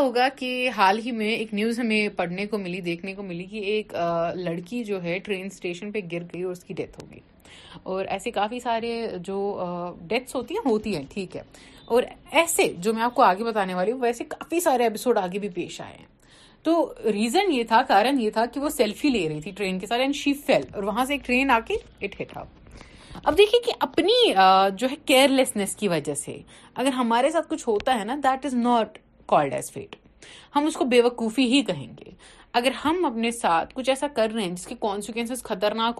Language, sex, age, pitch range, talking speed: Urdu, female, 30-49, 200-265 Hz, 200 wpm